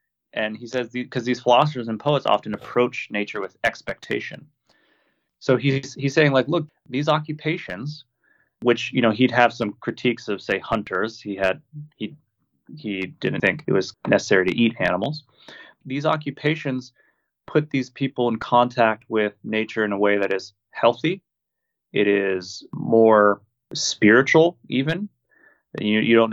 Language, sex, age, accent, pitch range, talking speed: English, male, 30-49, American, 110-130 Hz, 155 wpm